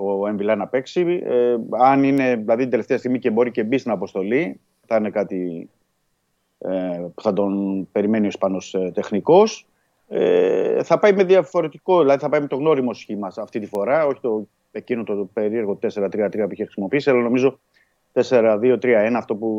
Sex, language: male, Greek